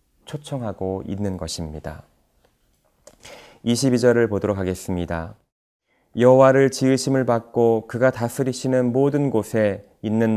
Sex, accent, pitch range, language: male, native, 100-125 Hz, Korean